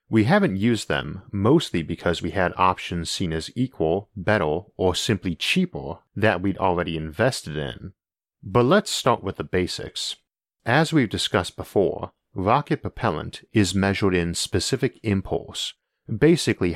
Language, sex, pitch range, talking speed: English, male, 85-110 Hz, 140 wpm